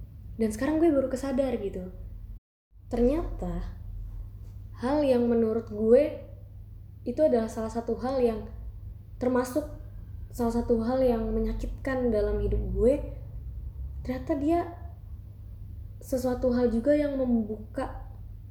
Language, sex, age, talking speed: Indonesian, female, 20-39, 105 wpm